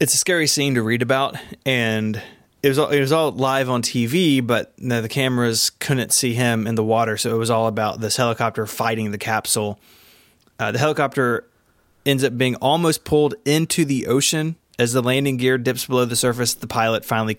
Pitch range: 110-135 Hz